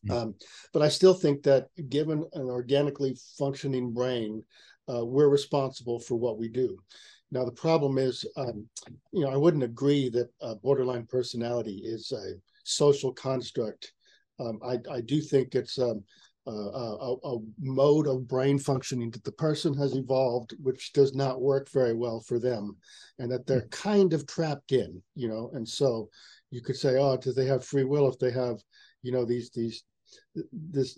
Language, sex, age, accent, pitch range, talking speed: English, male, 50-69, American, 120-140 Hz, 180 wpm